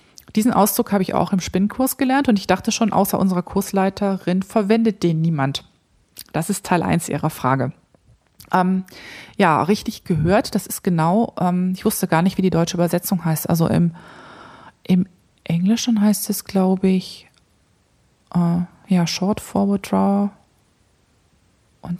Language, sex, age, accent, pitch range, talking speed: German, female, 20-39, German, 170-205 Hz, 150 wpm